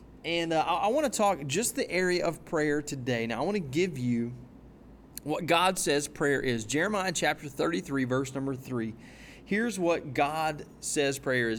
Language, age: English, 30-49